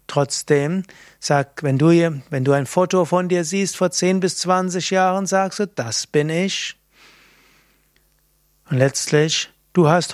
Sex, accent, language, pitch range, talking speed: male, German, German, 140-185 Hz, 155 wpm